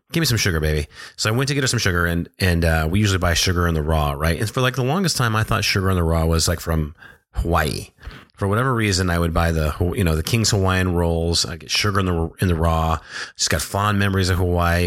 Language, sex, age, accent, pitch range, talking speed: English, male, 30-49, American, 85-105 Hz, 270 wpm